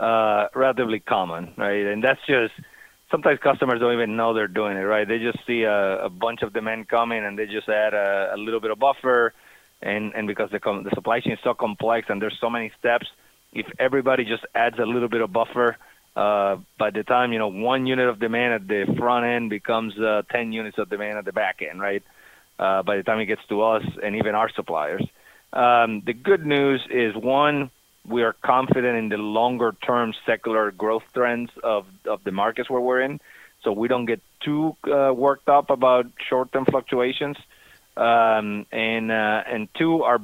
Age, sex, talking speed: 30-49, male, 200 wpm